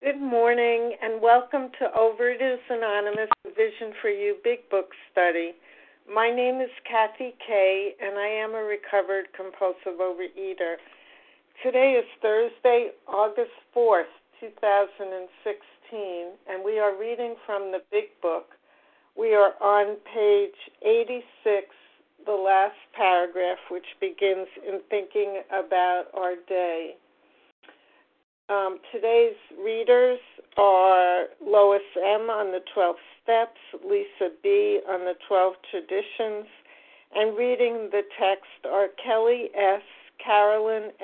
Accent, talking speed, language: American, 115 wpm, English